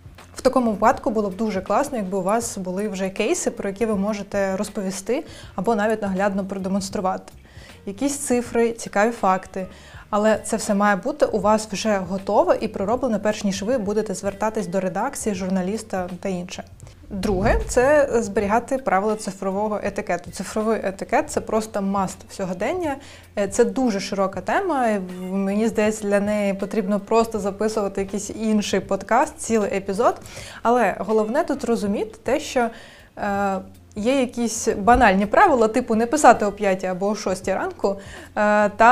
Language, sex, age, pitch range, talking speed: Ukrainian, female, 20-39, 200-235 Hz, 150 wpm